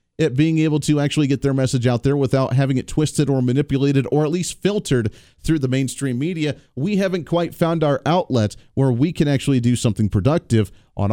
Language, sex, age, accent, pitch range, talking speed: English, male, 40-59, American, 120-155 Hz, 205 wpm